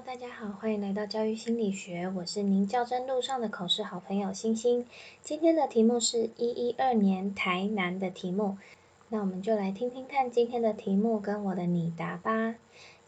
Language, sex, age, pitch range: Chinese, female, 20-39, 190-230 Hz